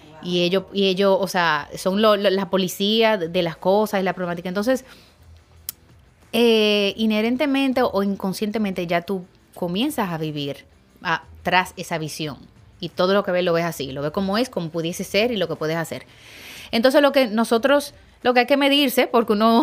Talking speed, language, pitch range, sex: 175 wpm, Spanish, 175-235 Hz, female